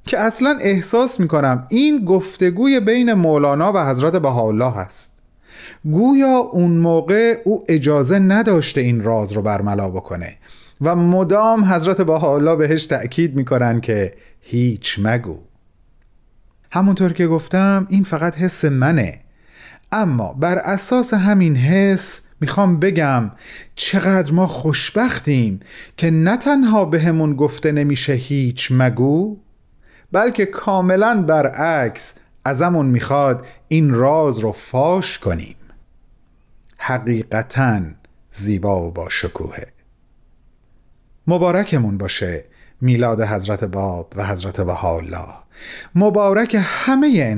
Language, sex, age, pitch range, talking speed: Persian, male, 40-59, 110-185 Hz, 110 wpm